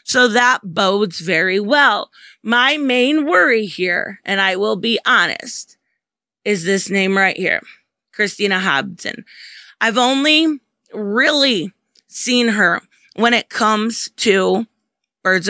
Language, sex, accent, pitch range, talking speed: English, female, American, 200-255 Hz, 120 wpm